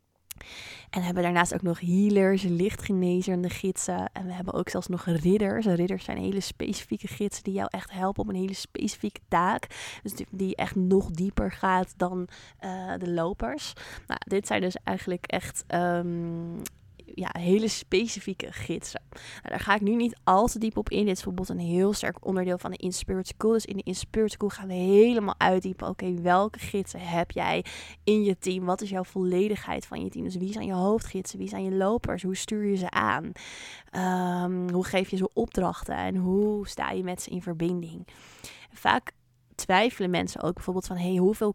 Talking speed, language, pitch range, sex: 190 wpm, Dutch, 180-195 Hz, female